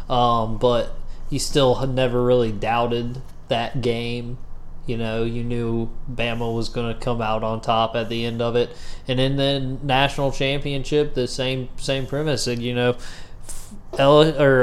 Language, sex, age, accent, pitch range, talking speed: English, male, 20-39, American, 115-135 Hz, 160 wpm